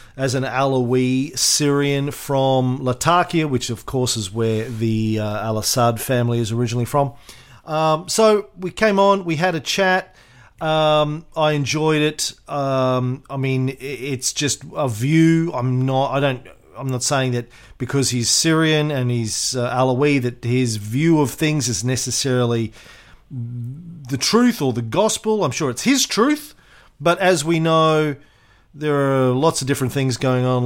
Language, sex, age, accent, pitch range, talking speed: English, male, 40-59, Australian, 120-145 Hz, 160 wpm